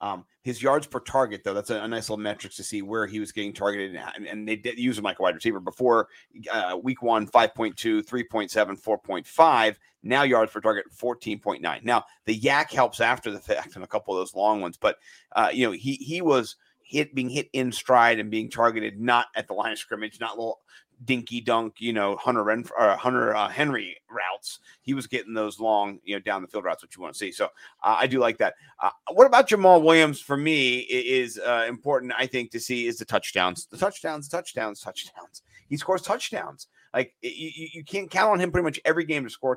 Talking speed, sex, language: 225 wpm, male, English